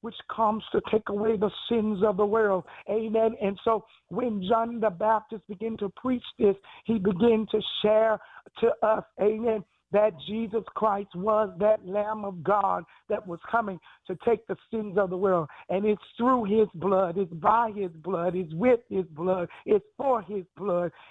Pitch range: 195-225 Hz